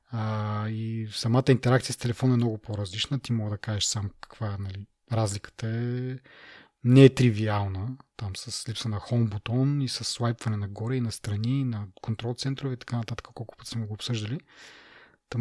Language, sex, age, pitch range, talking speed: Bulgarian, male, 30-49, 110-130 Hz, 185 wpm